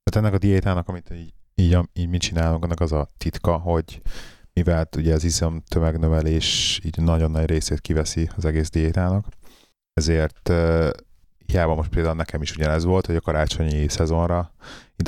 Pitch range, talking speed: 80-90 Hz, 165 wpm